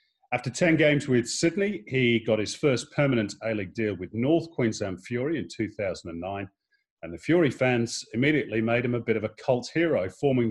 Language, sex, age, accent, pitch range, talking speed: English, male, 40-59, British, 110-145 Hz, 185 wpm